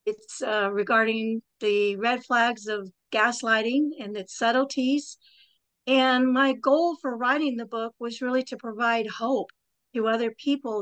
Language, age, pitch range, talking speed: English, 50-69, 210-250 Hz, 145 wpm